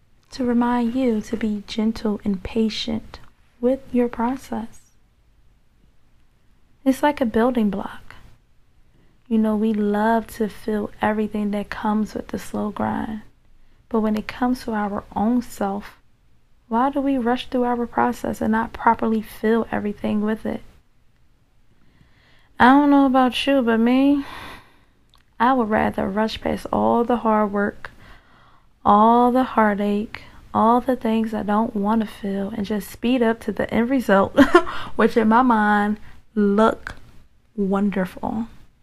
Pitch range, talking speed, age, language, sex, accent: 210-245 Hz, 140 wpm, 20-39, English, female, American